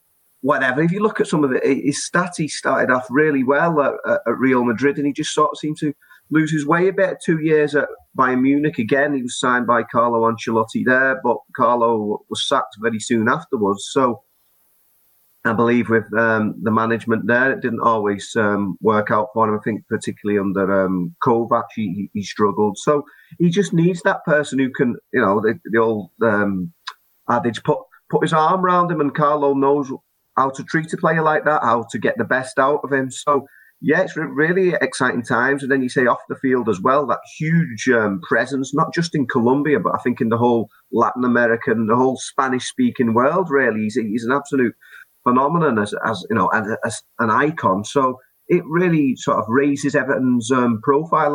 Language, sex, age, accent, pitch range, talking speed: English, male, 30-49, British, 115-150 Hz, 200 wpm